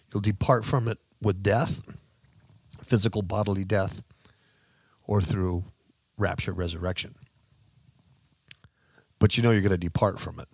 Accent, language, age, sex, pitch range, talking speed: American, English, 50-69, male, 100-140 Hz, 125 wpm